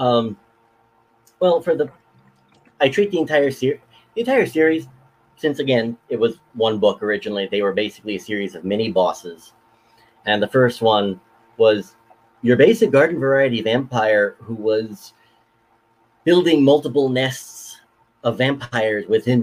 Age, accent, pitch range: 40-59, American, 110-130 Hz